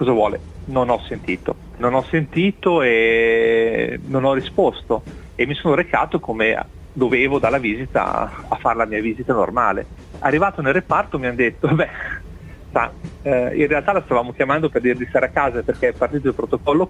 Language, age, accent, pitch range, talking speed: Italian, 40-59, native, 120-145 Hz, 180 wpm